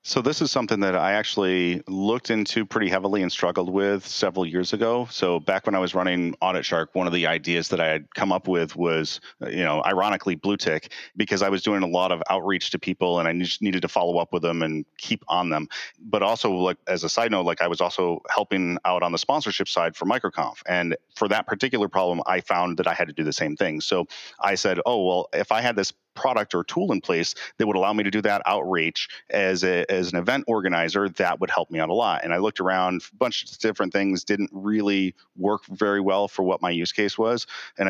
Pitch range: 90-100 Hz